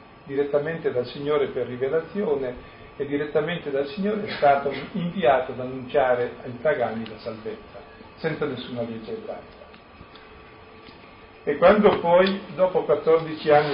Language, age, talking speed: Italian, 50-69, 120 wpm